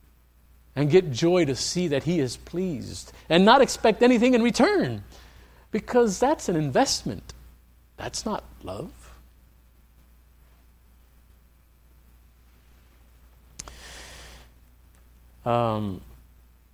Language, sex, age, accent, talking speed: English, male, 50-69, American, 80 wpm